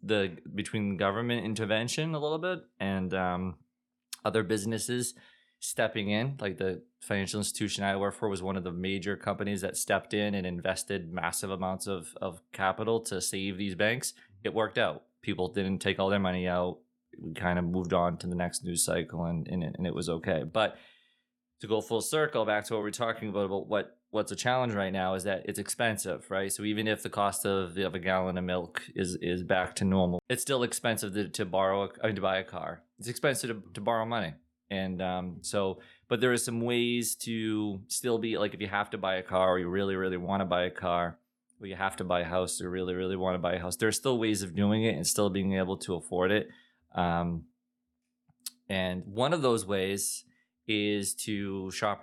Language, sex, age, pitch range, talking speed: English, male, 20-39, 95-110 Hz, 220 wpm